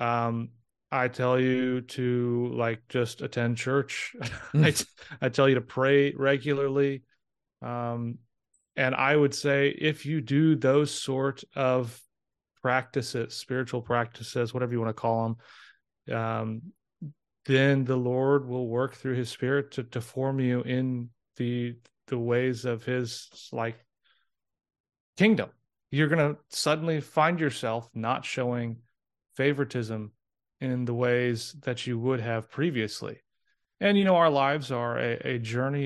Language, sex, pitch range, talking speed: English, male, 120-135 Hz, 140 wpm